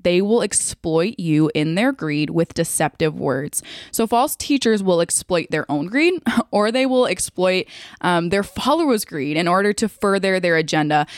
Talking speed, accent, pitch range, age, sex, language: 170 wpm, American, 165-220 Hz, 20-39, female, English